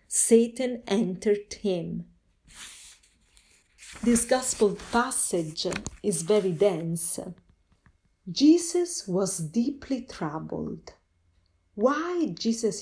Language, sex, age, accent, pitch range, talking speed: English, female, 40-59, Italian, 170-230 Hz, 70 wpm